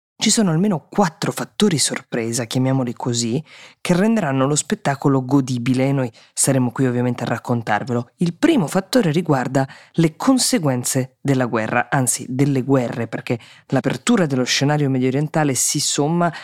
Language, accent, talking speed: Italian, native, 140 wpm